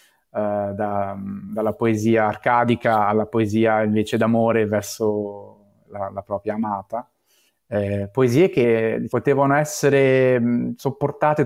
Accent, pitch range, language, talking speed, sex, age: native, 110-130 Hz, Italian, 100 wpm, male, 30-49